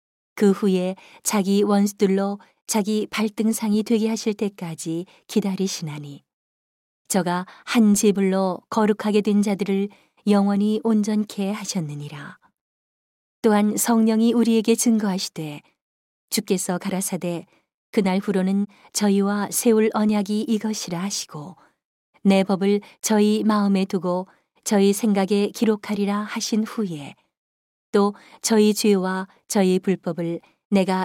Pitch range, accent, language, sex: 190-215 Hz, native, Korean, female